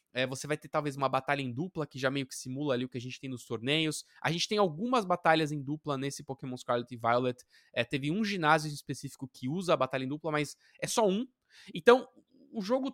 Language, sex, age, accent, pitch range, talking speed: Portuguese, male, 20-39, Brazilian, 135-175 Hz, 245 wpm